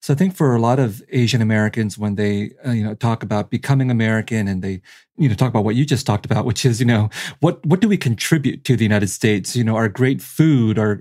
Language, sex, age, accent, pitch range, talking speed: English, male, 40-59, American, 110-140 Hz, 260 wpm